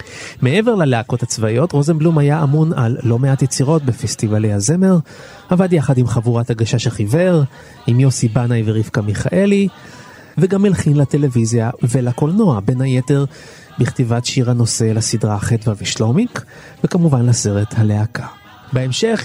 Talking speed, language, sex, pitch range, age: 120 wpm, Hebrew, male, 115-155 Hz, 30-49